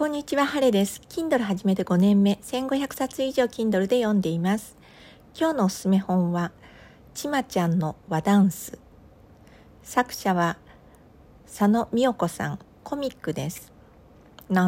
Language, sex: Japanese, female